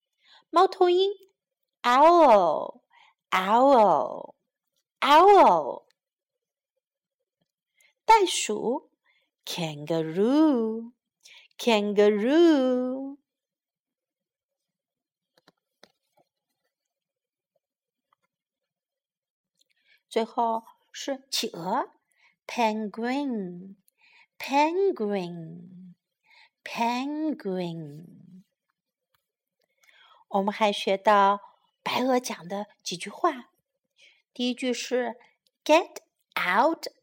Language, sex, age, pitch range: Chinese, female, 50-69, 200-335 Hz